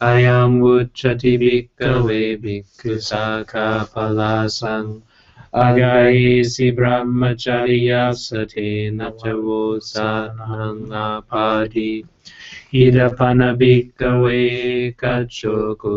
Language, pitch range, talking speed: English, 110-125 Hz, 60 wpm